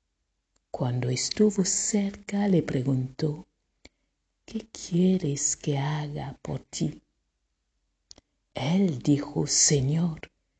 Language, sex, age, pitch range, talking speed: Spanish, female, 50-69, 125-165 Hz, 80 wpm